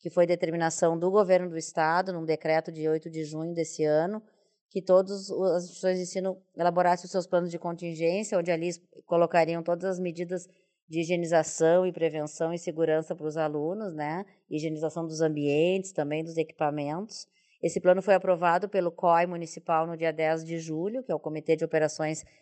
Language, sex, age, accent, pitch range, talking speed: Portuguese, female, 20-39, Brazilian, 160-190 Hz, 180 wpm